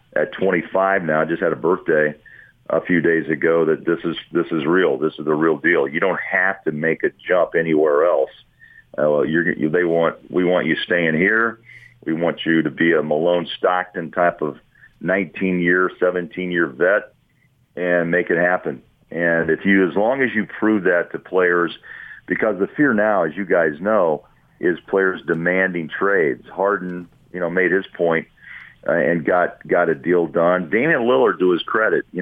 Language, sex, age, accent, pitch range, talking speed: English, male, 40-59, American, 85-90 Hz, 190 wpm